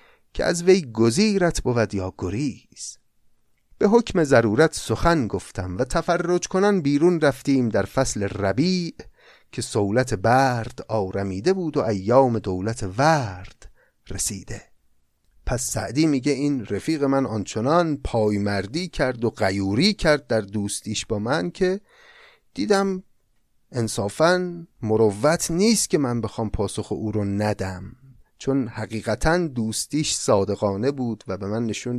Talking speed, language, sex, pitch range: 130 wpm, Persian, male, 105-160 Hz